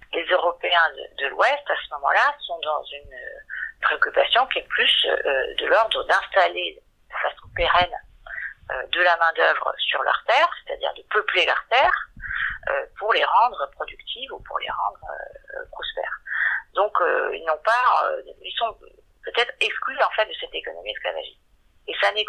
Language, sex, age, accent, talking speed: French, female, 50-69, French, 175 wpm